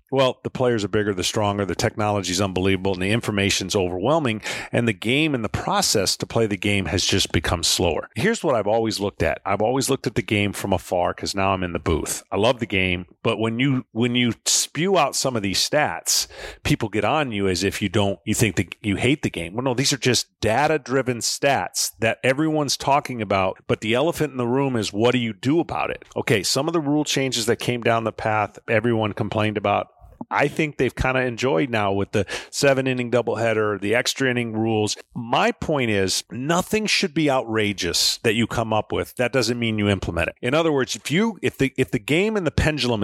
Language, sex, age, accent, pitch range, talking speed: English, male, 40-59, American, 100-130 Hz, 225 wpm